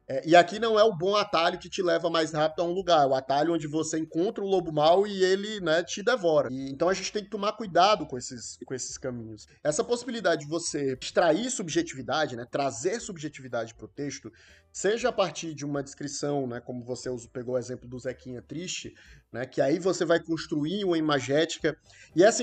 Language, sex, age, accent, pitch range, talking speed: Portuguese, male, 20-39, Brazilian, 145-180 Hz, 205 wpm